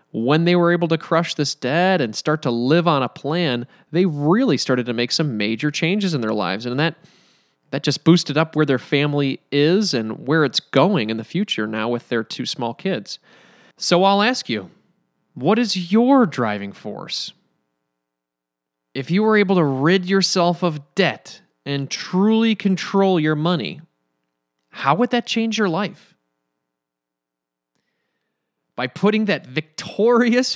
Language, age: English, 20-39